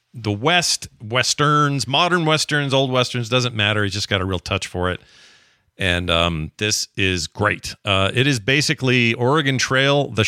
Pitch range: 95-120 Hz